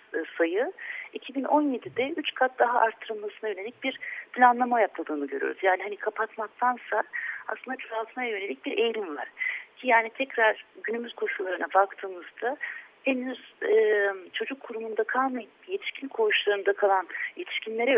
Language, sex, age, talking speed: Turkish, female, 40-59, 115 wpm